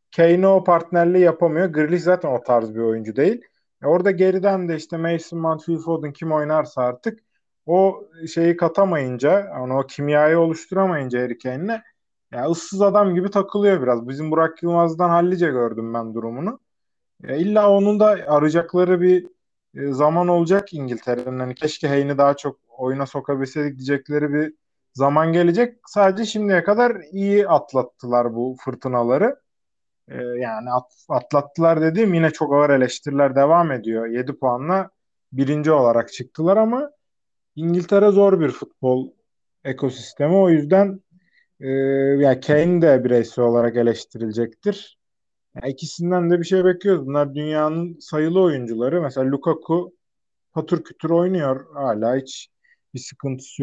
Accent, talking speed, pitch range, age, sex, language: native, 130 wpm, 130-180 Hz, 30-49, male, Turkish